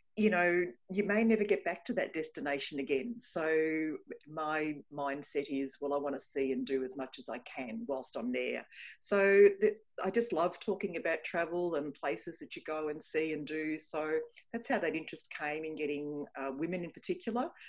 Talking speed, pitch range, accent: 195 wpm, 135-185 Hz, Australian